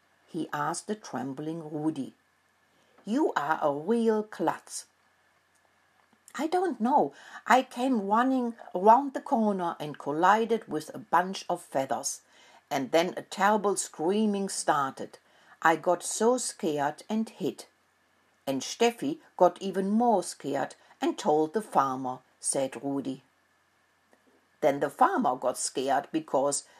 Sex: female